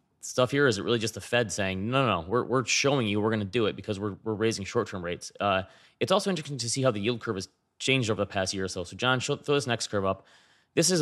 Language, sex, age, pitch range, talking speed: English, male, 20-39, 100-130 Hz, 300 wpm